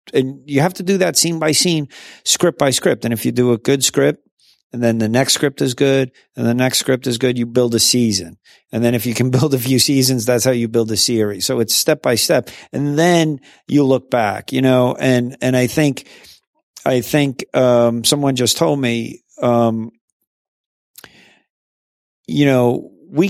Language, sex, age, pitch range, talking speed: English, male, 50-69, 115-140 Hz, 200 wpm